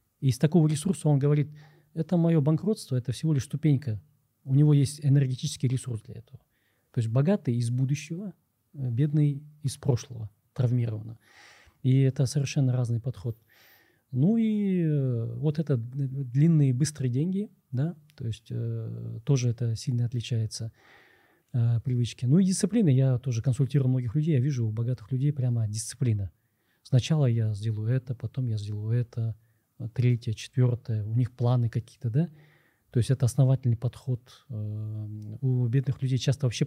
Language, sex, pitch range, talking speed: Russian, male, 115-145 Hz, 145 wpm